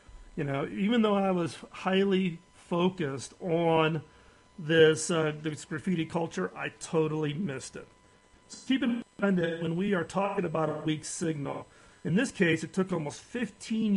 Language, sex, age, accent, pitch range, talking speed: English, male, 40-59, American, 155-195 Hz, 160 wpm